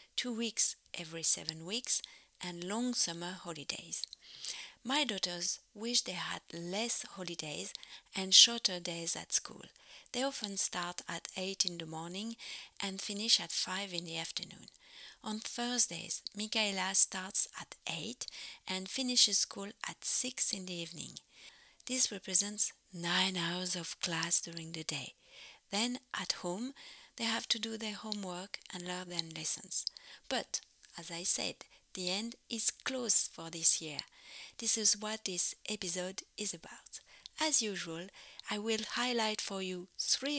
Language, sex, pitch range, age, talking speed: English, female, 175-225 Hz, 40-59, 145 wpm